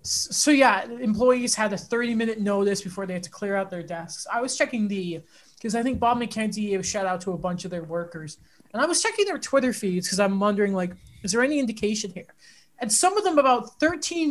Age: 20-39